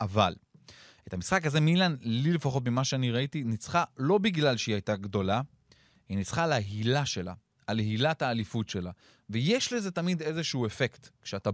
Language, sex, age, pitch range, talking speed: Hebrew, male, 30-49, 105-150 Hz, 160 wpm